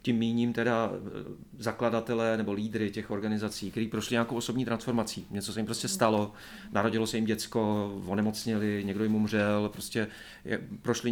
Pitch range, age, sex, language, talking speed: 105-115 Hz, 40-59, male, Czech, 150 wpm